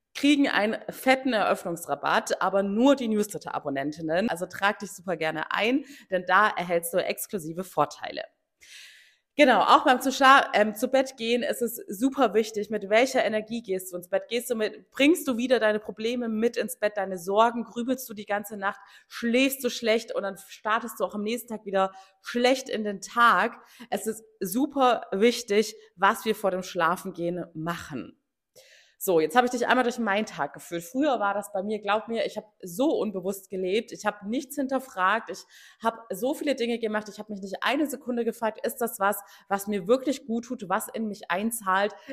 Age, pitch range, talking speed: 30-49, 195-250 Hz, 190 wpm